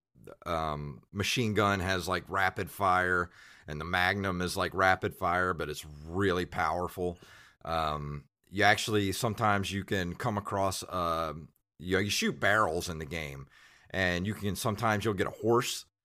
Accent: American